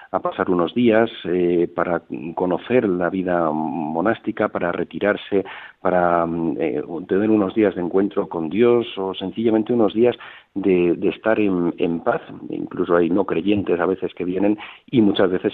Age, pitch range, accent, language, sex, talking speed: 50-69, 90-105 Hz, Spanish, Spanish, male, 160 wpm